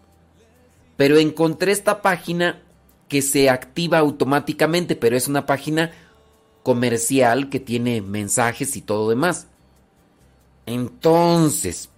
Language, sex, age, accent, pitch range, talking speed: Spanish, male, 40-59, Mexican, 100-165 Hz, 100 wpm